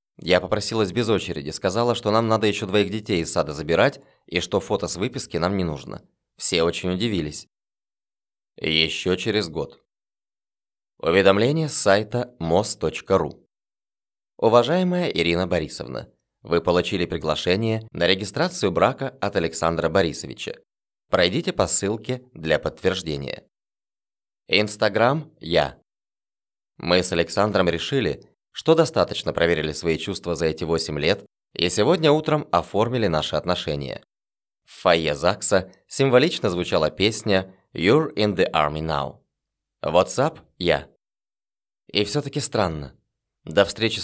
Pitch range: 85-110 Hz